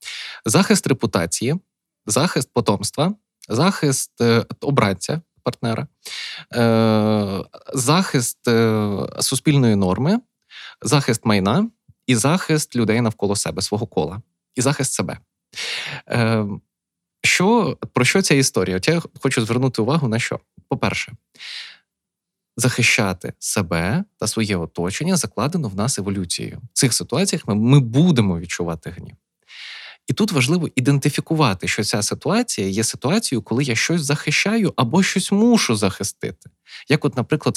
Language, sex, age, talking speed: Ukrainian, male, 20-39, 120 wpm